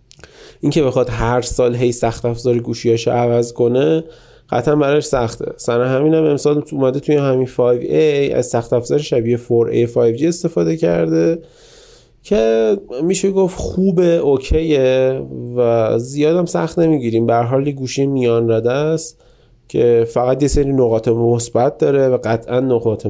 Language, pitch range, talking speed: Persian, 115-135 Hz, 145 wpm